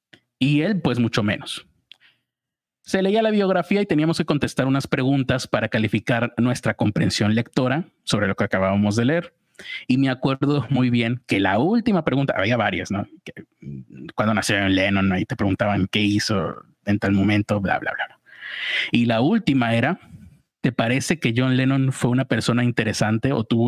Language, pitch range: Spanish, 110-135 Hz